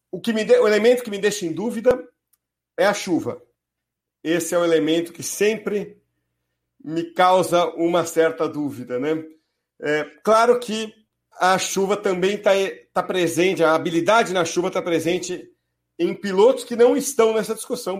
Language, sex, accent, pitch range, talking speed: Portuguese, male, Brazilian, 160-210 Hz, 145 wpm